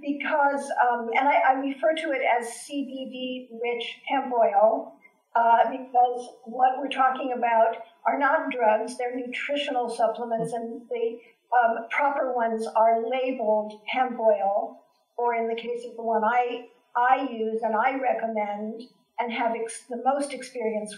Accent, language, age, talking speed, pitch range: American, English, 50-69, 145 wpm, 225-270 Hz